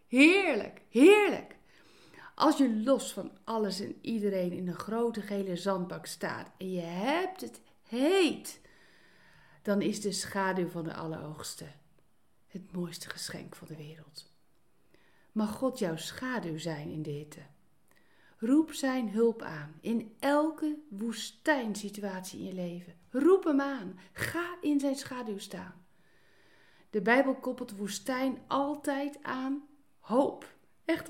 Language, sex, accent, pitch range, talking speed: Dutch, female, Dutch, 190-280 Hz, 130 wpm